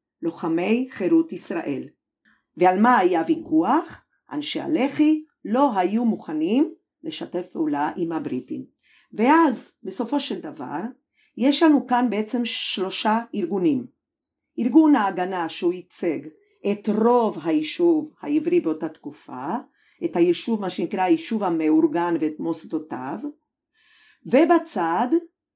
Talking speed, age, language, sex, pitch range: 105 wpm, 50-69, Hebrew, female, 190-310 Hz